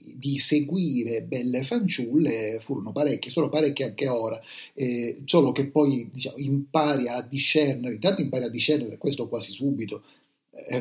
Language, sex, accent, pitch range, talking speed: Italian, male, native, 120-150 Hz, 145 wpm